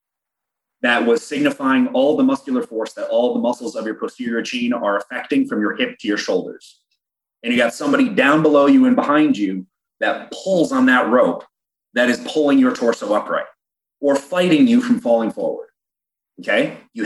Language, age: English, 30-49